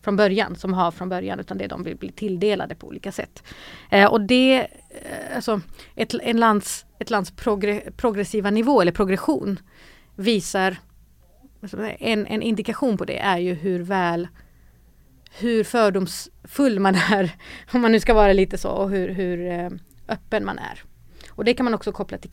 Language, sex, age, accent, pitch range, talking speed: English, female, 30-49, Swedish, 185-225 Hz, 165 wpm